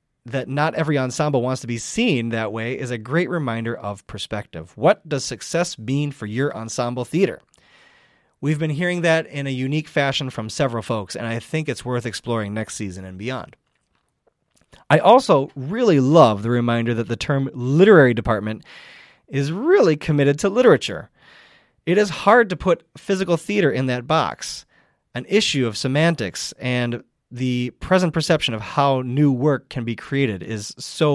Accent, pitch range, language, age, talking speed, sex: American, 115-150 Hz, English, 30-49, 170 wpm, male